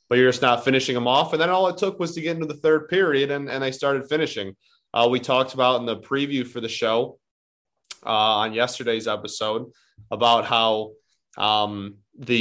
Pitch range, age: 110-130 Hz, 20-39